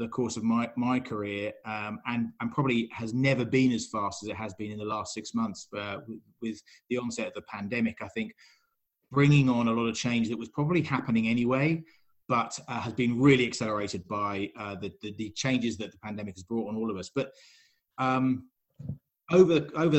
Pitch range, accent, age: 110-130 Hz, British, 20-39